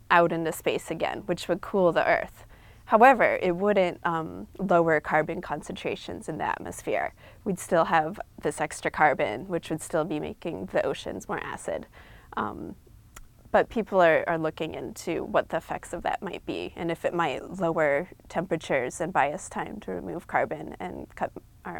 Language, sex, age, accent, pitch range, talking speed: English, female, 20-39, American, 160-190 Hz, 175 wpm